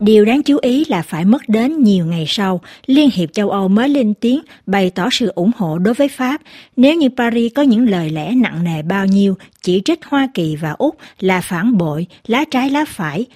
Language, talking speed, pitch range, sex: Vietnamese, 225 wpm, 185-245 Hz, female